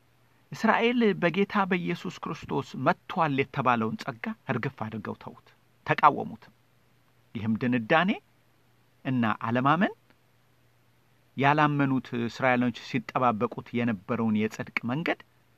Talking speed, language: 80 wpm, Amharic